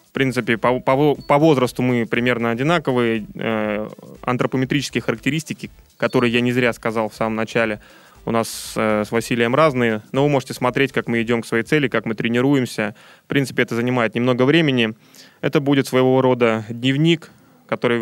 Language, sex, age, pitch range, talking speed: Russian, male, 20-39, 120-140 Hz, 165 wpm